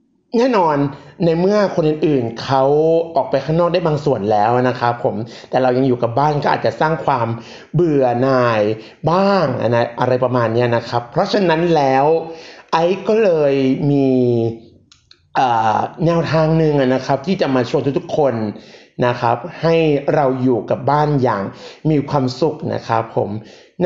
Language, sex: Thai, male